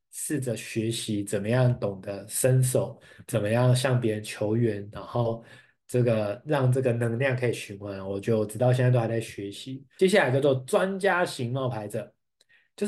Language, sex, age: Chinese, male, 20-39